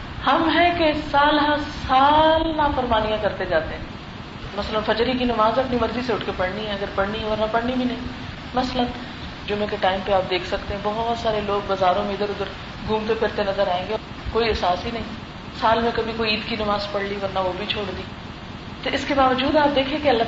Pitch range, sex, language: 210-275 Hz, female, Urdu